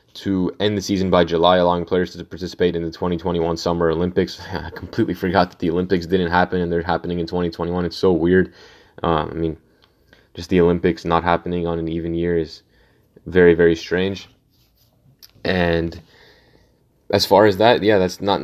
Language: English